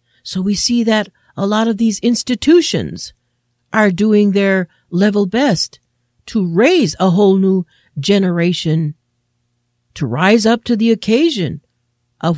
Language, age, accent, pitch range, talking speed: English, 50-69, American, 155-245 Hz, 130 wpm